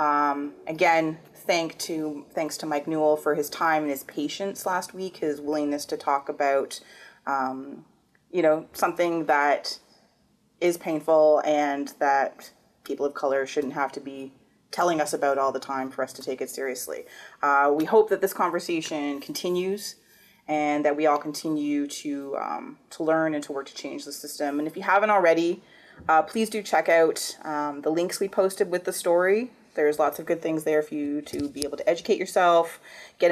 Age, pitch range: 30-49, 145-175 Hz